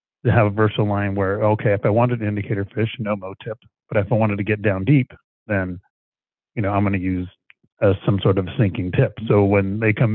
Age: 30-49